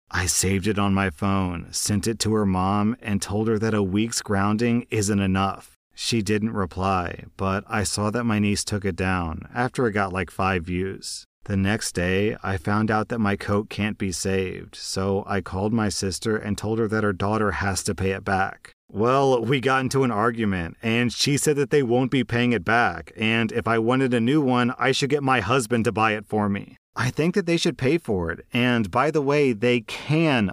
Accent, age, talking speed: American, 40-59, 220 wpm